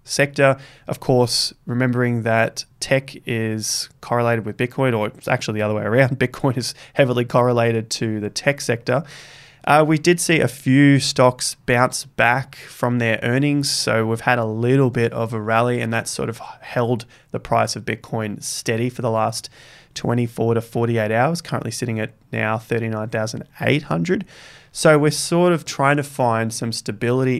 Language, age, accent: English, 20-39, Australian